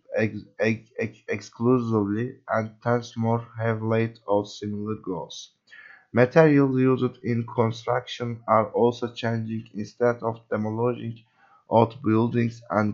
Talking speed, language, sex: 115 wpm, English, male